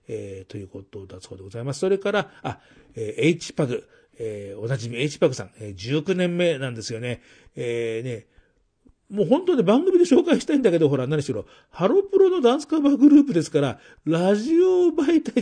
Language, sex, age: Japanese, male, 40-59